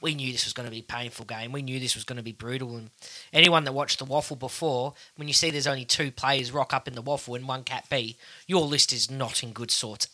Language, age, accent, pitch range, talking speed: English, 20-39, Australian, 130-155 Hz, 285 wpm